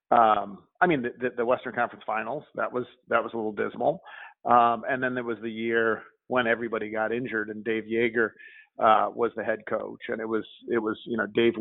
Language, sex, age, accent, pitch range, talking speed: English, male, 40-59, American, 110-170 Hz, 215 wpm